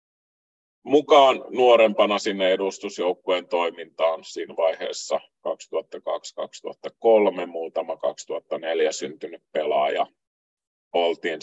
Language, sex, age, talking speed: Finnish, male, 30-49, 70 wpm